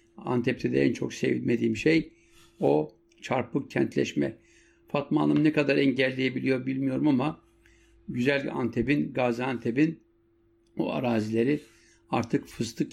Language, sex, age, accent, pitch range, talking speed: German, male, 60-79, Turkish, 115-145 Hz, 105 wpm